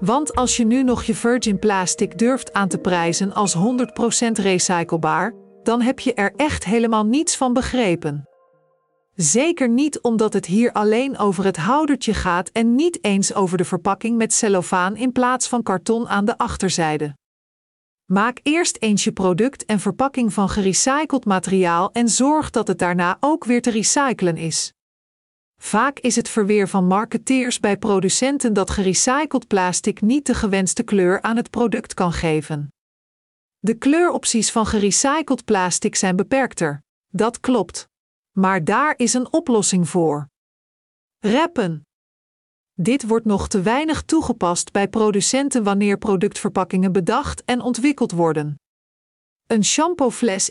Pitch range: 185-245 Hz